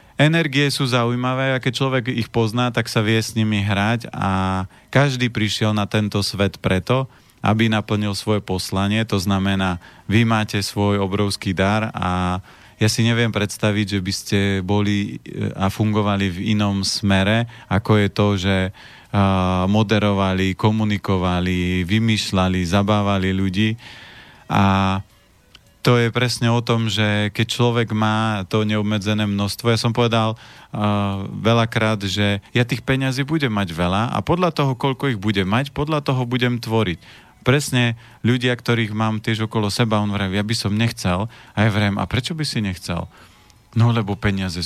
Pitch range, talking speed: 100-115 Hz, 155 wpm